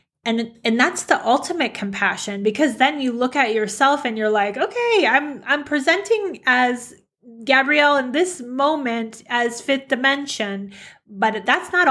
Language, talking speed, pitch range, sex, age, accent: English, 150 wpm, 215-260 Hz, female, 20-39, American